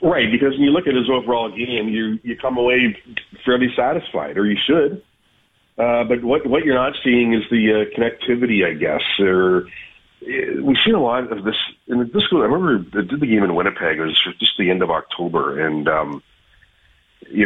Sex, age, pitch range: male, 40-59, 95-120 Hz